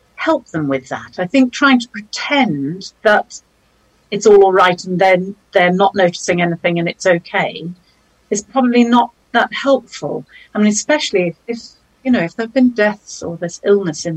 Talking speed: 185 wpm